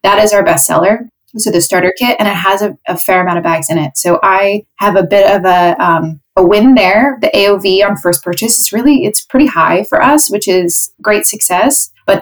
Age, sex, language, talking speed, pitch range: 20-39, female, English, 225 wpm, 170-205 Hz